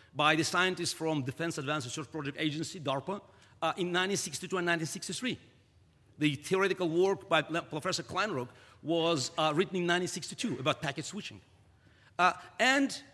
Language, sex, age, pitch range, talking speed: English, male, 50-69, 130-190 Hz, 140 wpm